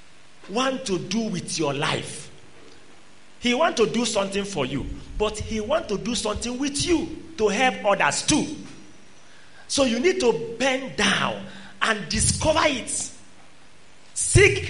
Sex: male